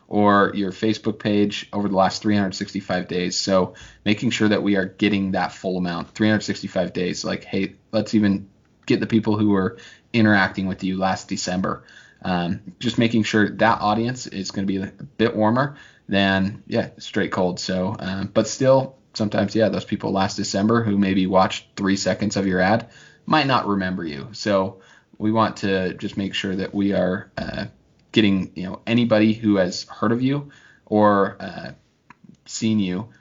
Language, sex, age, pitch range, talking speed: English, male, 20-39, 95-110 Hz, 180 wpm